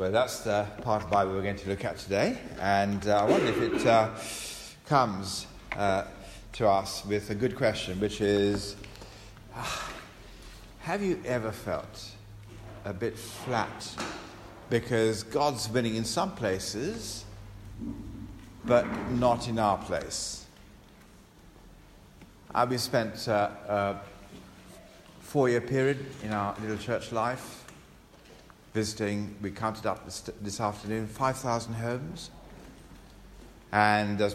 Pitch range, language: 95-120 Hz, English